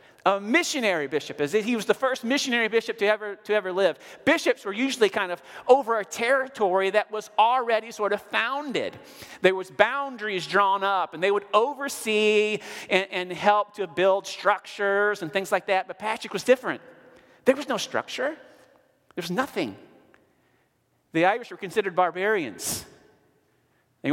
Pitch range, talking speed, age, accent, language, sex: 160-210 Hz, 155 wpm, 40-59, American, English, male